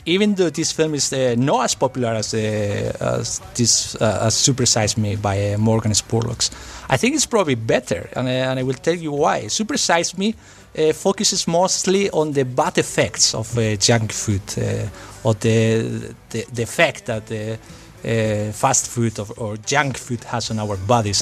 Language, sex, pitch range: English, male, 110-145 Hz